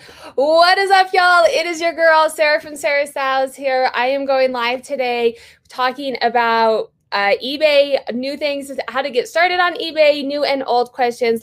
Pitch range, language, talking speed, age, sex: 205-260 Hz, English, 180 wpm, 20-39, female